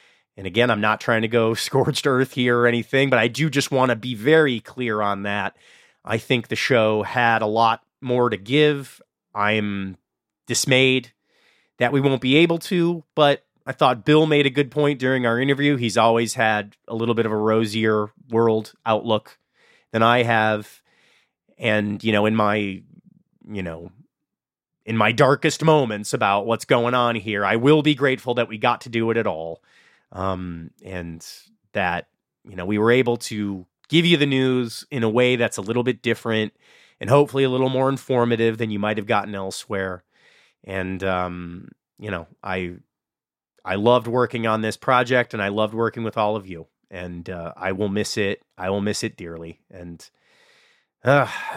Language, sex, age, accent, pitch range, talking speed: English, male, 30-49, American, 105-130 Hz, 185 wpm